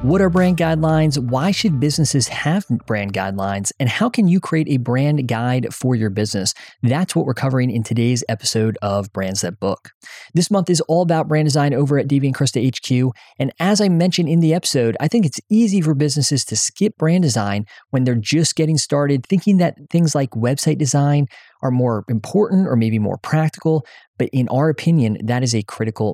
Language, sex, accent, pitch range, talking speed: English, male, American, 115-160 Hz, 195 wpm